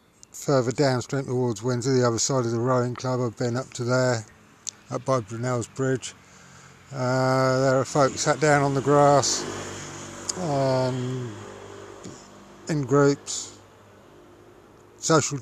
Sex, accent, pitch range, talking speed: male, British, 110-130 Hz, 130 wpm